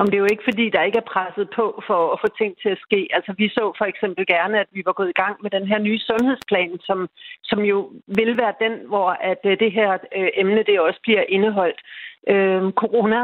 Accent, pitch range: native, 190-230 Hz